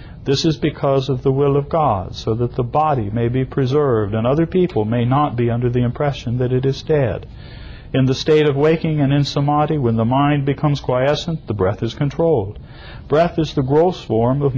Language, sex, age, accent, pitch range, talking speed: English, male, 60-79, American, 120-150 Hz, 210 wpm